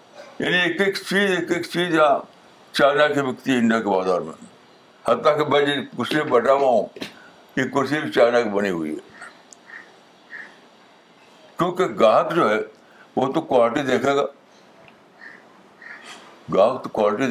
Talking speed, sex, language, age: 125 wpm, male, Urdu, 60-79